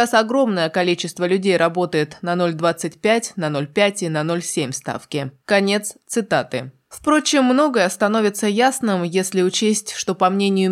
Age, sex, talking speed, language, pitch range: 20-39, female, 135 wpm, Russian, 170-220 Hz